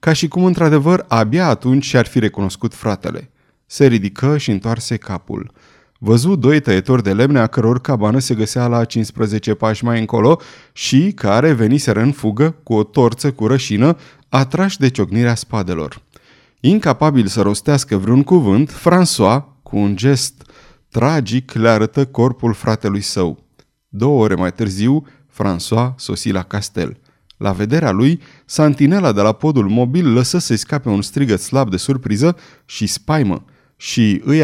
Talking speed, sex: 150 wpm, male